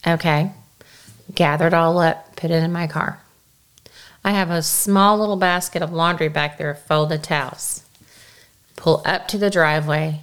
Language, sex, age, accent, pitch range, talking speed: English, female, 30-49, American, 160-210 Hz, 165 wpm